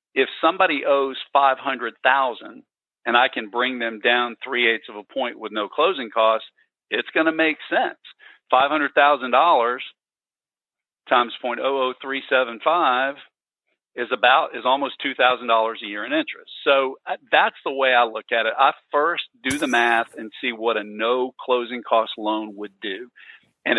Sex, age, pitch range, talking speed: male, 50-69, 115-135 Hz, 180 wpm